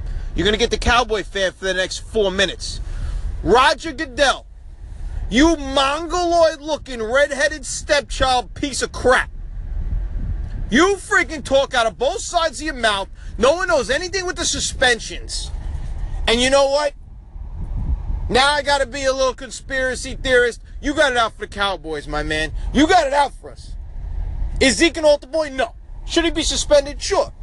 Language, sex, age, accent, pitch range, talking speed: English, male, 30-49, American, 185-290 Hz, 170 wpm